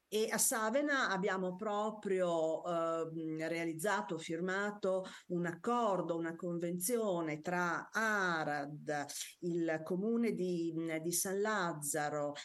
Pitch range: 155-190 Hz